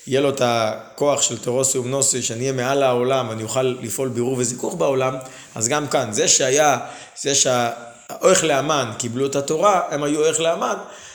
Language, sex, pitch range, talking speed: Hebrew, male, 125-150 Hz, 170 wpm